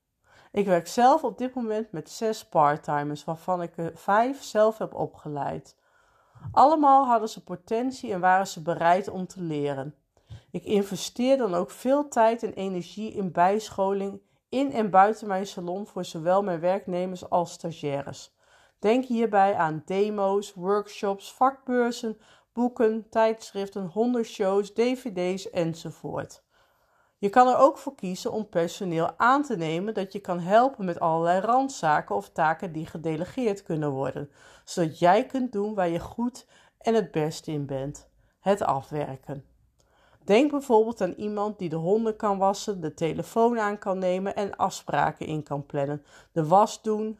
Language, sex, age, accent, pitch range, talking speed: Dutch, female, 40-59, Dutch, 170-225 Hz, 155 wpm